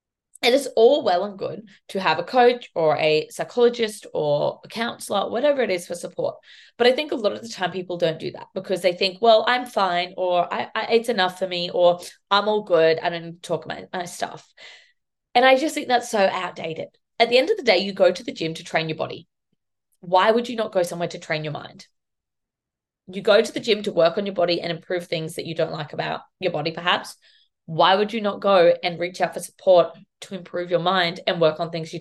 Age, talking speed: 20-39, 245 wpm